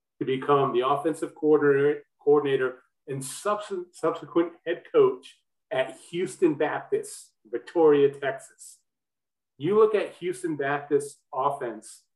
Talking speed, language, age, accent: 100 wpm, English, 40-59, American